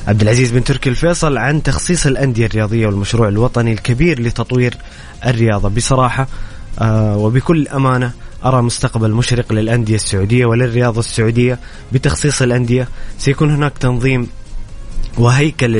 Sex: male